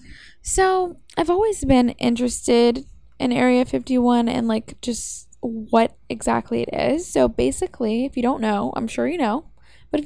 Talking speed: 160 wpm